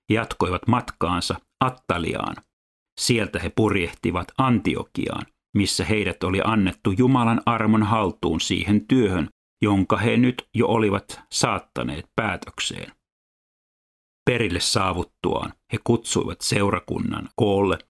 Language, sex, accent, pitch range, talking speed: Finnish, male, native, 90-115 Hz, 95 wpm